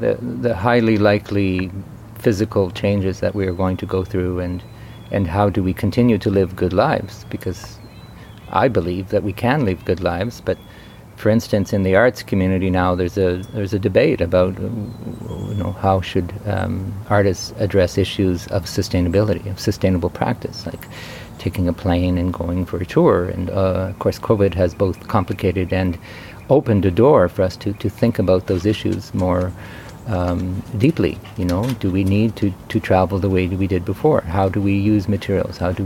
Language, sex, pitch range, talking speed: English, male, 95-110 Hz, 185 wpm